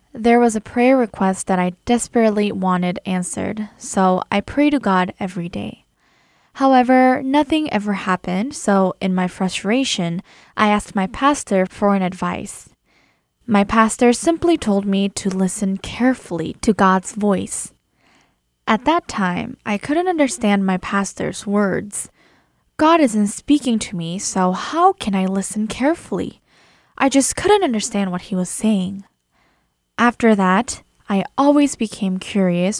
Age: 10-29